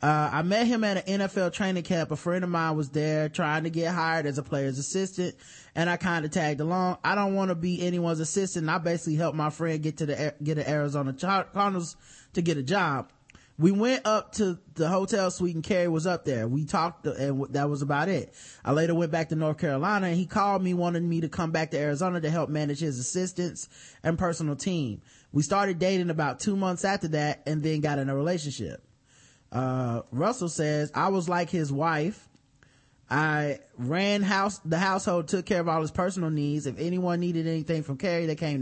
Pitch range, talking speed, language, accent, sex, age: 145-180 Hz, 220 wpm, English, American, male, 20-39